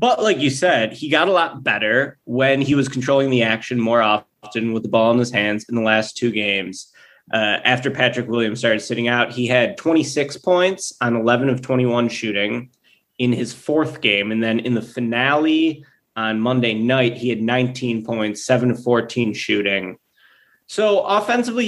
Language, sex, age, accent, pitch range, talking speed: English, male, 20-39, American, 110-130 Hz, 185 wpm